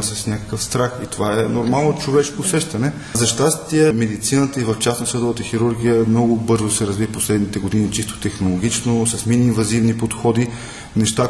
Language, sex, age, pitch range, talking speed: Bulgarian, male, 20-39, 105-120 Hz, 155 wpm